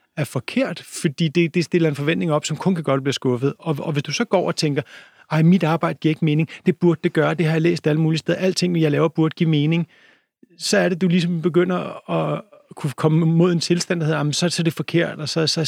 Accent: native